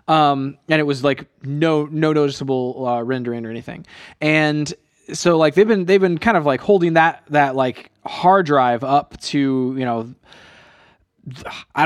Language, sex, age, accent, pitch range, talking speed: English, male, 20-39, American, 130-155 Hz, 165 wpm